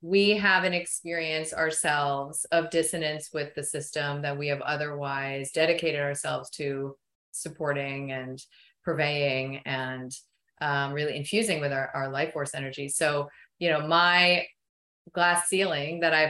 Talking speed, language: 140 wpm, English